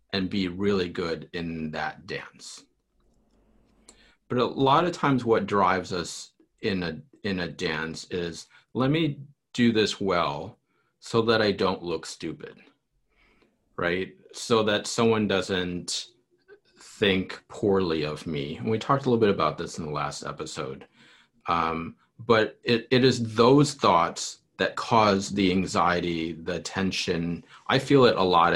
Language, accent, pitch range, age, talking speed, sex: English, American, 85-115 Hz, 40-59, 150 wpm, male